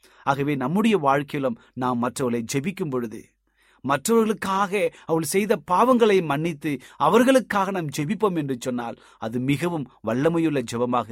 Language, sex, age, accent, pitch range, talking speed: Tamil, male, 30-49, native, 130-210 Hz, 115 wpm